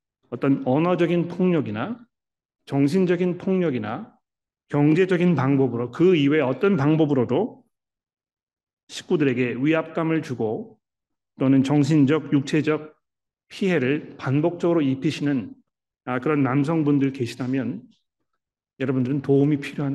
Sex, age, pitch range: male, 40-59, 135-170 Hz